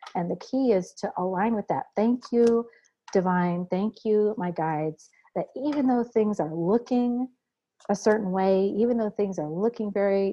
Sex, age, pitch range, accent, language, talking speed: female, 50-69, 180-215 Hz, American, English, 175 wpm